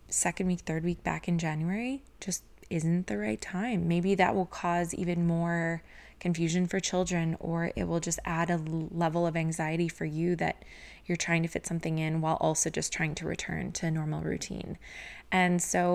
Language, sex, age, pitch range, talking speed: English, female, 20-39, 165-195 Hz, 190 wpm